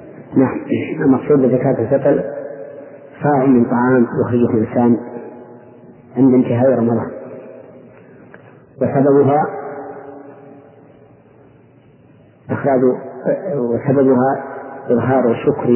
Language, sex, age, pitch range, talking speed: Arabic, male, 40-59, 120-140 Hz, 65 wpm